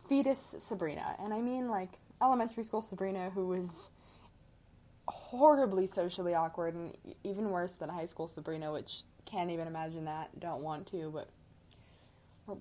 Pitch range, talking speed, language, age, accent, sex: 165-200 Hz, 145 wpm, English, 20-39, American, female